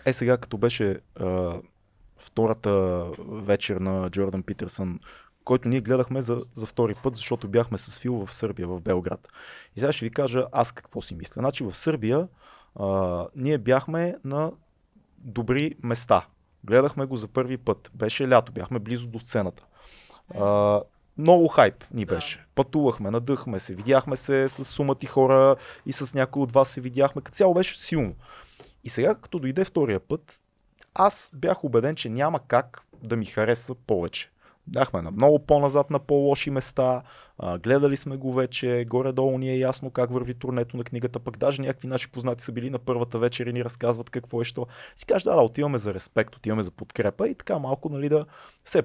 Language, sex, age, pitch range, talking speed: Bulgarian, male, 20-39, 105-135 Hz, 180 wpm